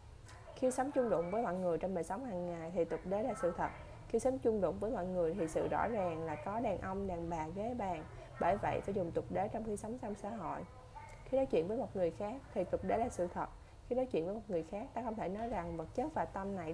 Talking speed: 285 wpm